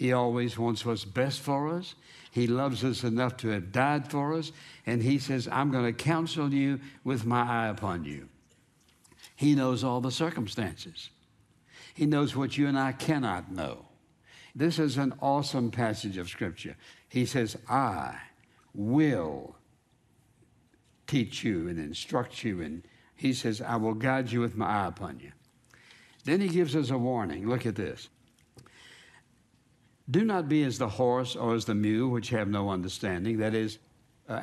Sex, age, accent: male, 60-79, American